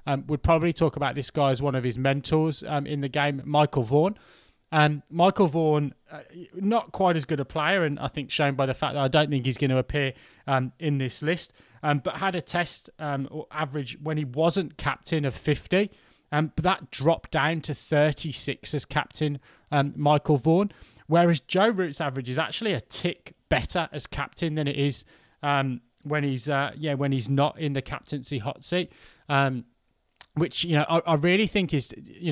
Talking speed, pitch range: 205 wpm, 135-160 Hz